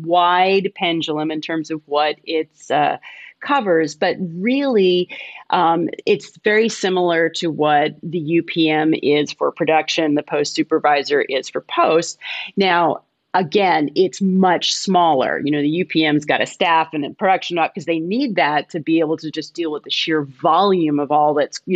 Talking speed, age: 170 wpm, 30-49